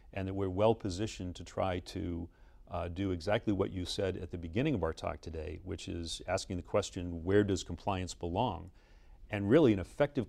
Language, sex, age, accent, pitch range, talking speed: English, male, 40-59, American, 85-105 Hz, 200 wpm